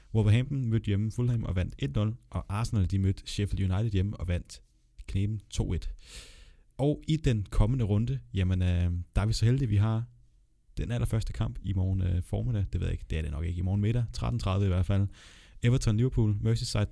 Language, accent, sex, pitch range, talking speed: Danish, native, male, 90-115 Hz, 200 wpm